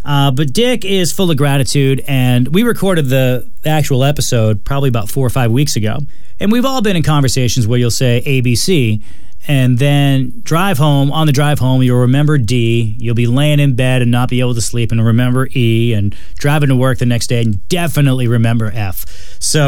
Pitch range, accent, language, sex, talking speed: 120-155 Hz, American, English, male, 210 wpm